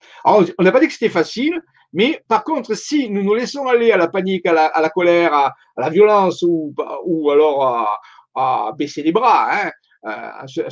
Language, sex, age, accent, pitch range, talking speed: French, male, 50-69, French, 175-255 Hz, 215 wpm